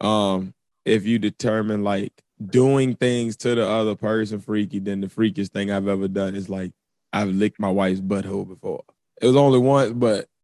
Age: 20-39